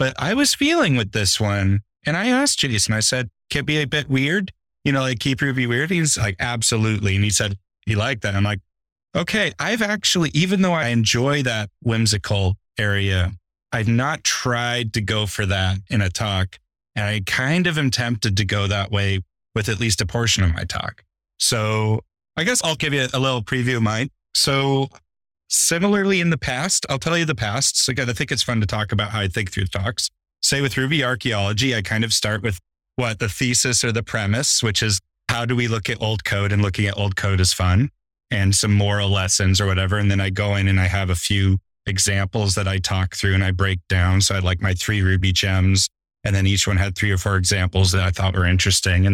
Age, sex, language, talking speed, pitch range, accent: 30-49, male, English, 230 wpm, 95-130 Hz, American